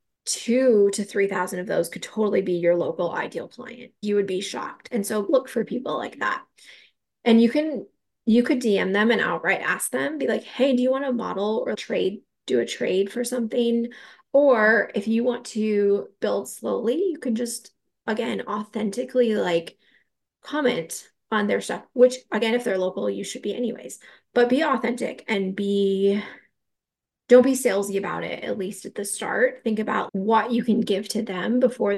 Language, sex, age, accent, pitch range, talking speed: English, female, 20-39, American, 205-245 Hz, 190 wpm